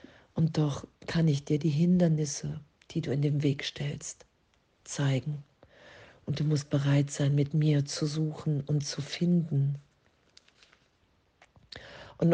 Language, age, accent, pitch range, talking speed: German, 50-69, German, 140-155 Hz, 130 wpm